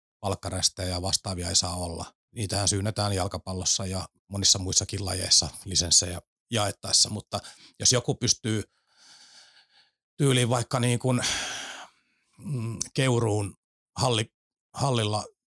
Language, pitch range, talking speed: Finnish, 90-115 Hz, 100 wpm